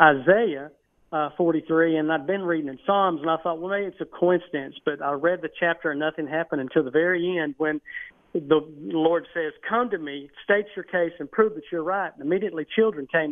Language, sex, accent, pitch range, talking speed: English, male, American, 155-195 Hz, 220 wpm